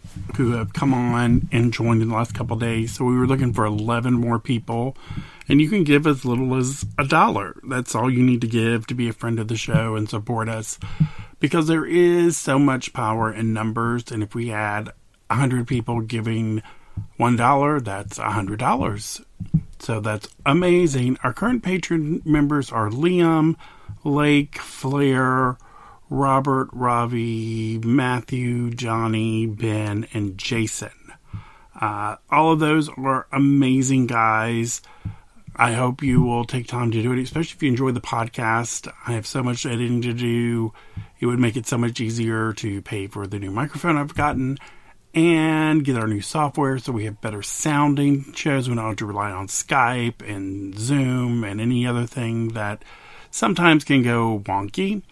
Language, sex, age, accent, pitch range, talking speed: English, male, 40-59, American, 110-140 Hz, 170 wpm